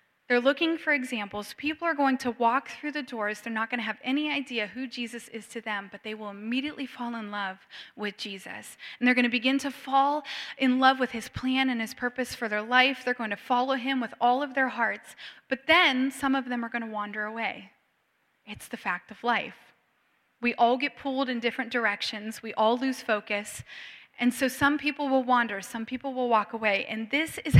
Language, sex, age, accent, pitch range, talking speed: English, female, 10-29, American, 220-270 Hz, 220 wpm